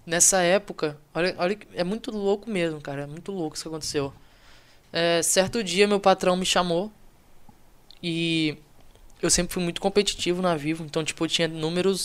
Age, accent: 10-29, Brazilian